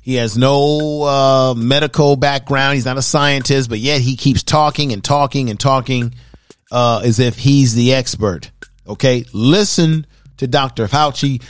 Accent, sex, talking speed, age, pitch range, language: American, male, 155 wpm, 40-59, 120-145 Hz, English